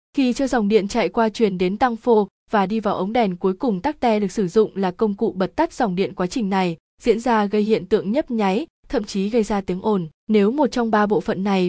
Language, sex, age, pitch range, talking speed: Vietnamese, female, 20-39, 190-240 Hz, 265 wpm